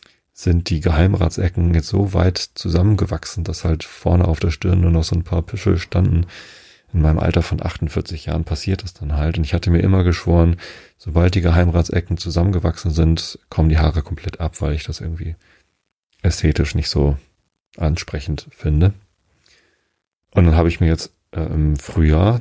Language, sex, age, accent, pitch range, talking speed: German, male, 40-59, German, 80-90 Hz, 170 wpm